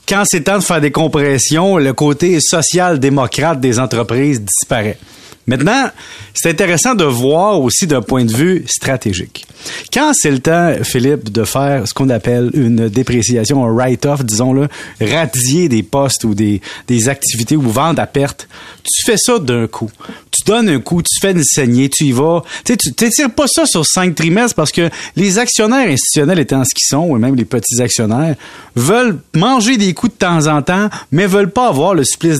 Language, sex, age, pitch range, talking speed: French, male, 30-49, 125-165 Hz, 190 wpm